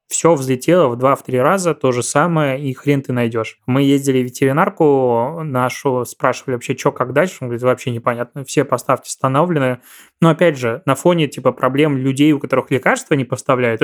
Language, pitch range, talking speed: Russian, 125-150 Hz, 180 wpm